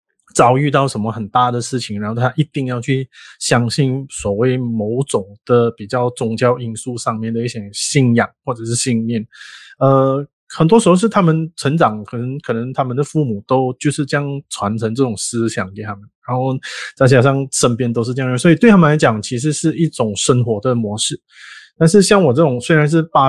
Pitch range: 115-145 Hz